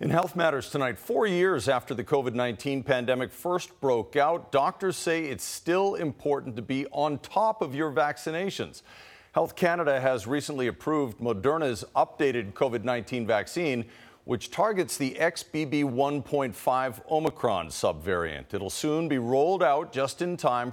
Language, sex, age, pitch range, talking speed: English, male, 50-69, 120-155 Hz, 140 wpm